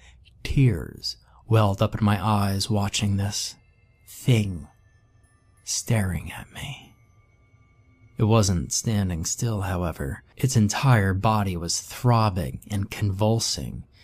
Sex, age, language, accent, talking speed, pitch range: male, 20-39, English, American, 105 wpm, 100-120 Hz